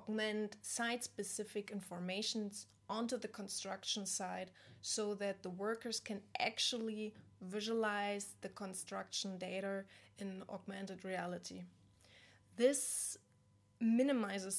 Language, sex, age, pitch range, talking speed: English, female, 20-39, 190-225 Hz, 90 wpm